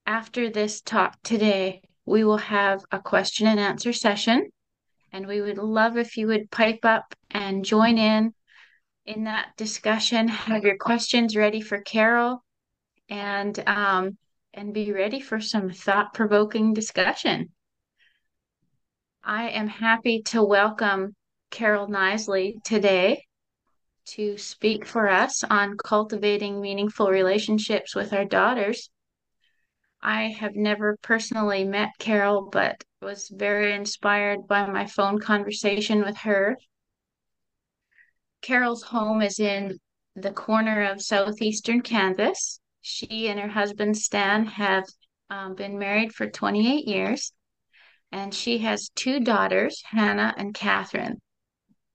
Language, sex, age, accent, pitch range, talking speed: English, female, 30-49, American, 200-220 Hz, 120 wpm